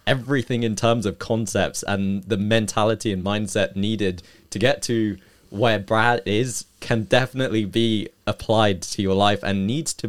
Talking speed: 160 wpm